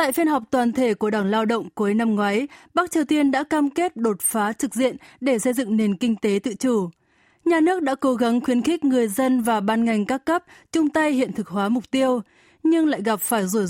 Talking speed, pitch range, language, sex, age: 245 wpm, 215-280 Hz, Vietnamese, female, 20-39